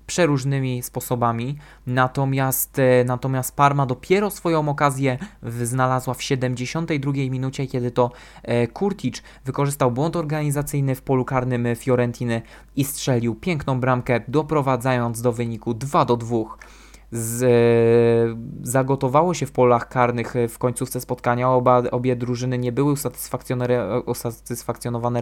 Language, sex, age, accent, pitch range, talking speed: Polish, male, 20-39, native, 120-145 Hz, 105 wpm